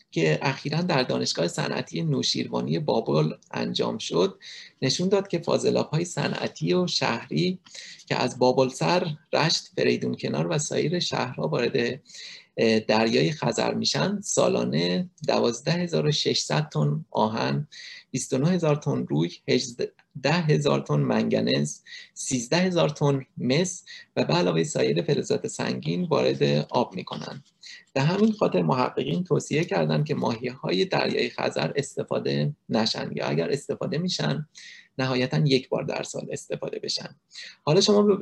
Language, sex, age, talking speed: Persian, male, 30-49, 120 wpm